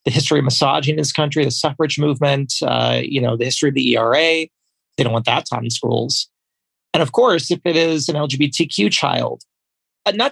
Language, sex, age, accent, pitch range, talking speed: English, male, 30-49, American, 125-160 Hz, 205 wpm